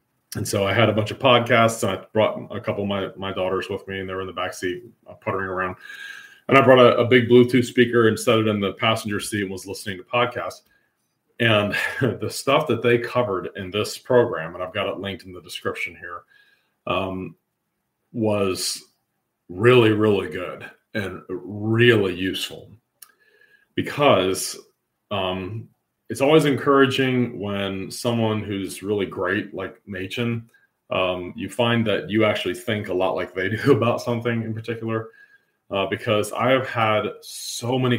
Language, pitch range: English, 100-125 Hz